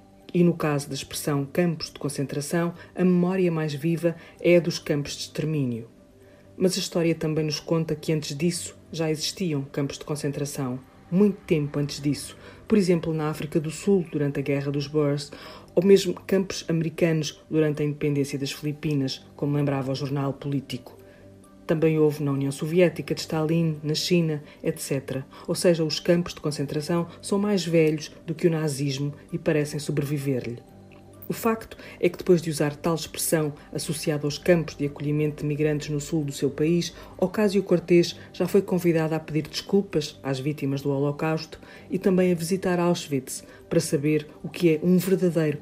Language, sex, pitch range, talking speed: Portuguese, female, 145-170 Hz, 175 wpm